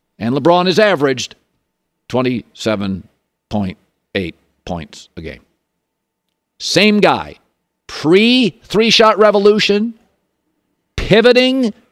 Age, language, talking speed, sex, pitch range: 50-69, English, 75 wpm, male, 145-205 Hz